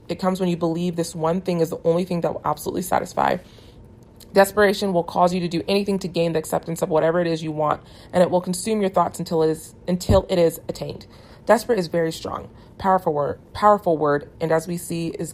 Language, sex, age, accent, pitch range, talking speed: English, female, 30-49, American, 155-180 Hz, 230 wpm